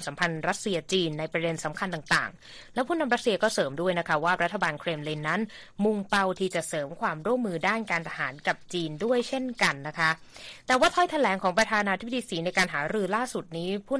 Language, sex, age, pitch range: Thai, female, 20-39, 170-220 Hz